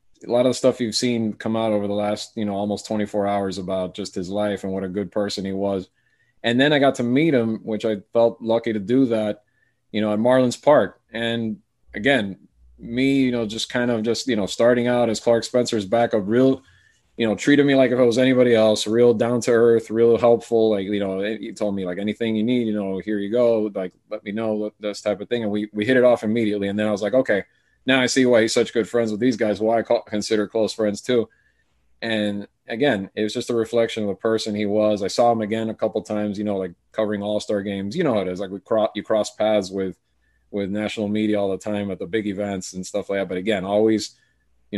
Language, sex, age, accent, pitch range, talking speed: English, male, 20-39, American, 100-115 Hz, 255 wpm